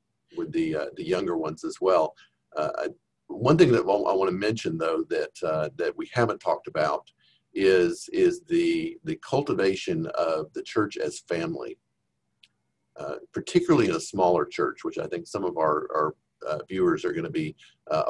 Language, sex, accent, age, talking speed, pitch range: English, male, American, 50-69, 180 wpm, 335-385 Hz